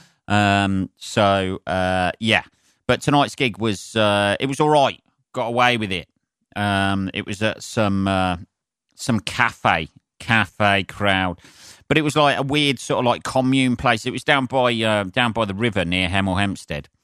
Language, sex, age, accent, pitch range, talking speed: English, male, 40-59, British, 100-120 Hz, 175 wpm